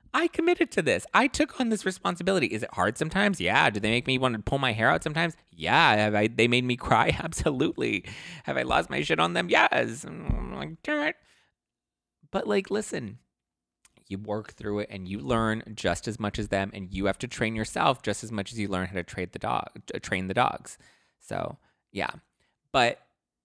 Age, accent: 20-39, American